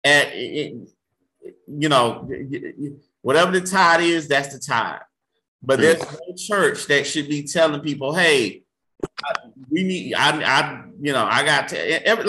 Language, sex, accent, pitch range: English, male, American, 150-230 Hz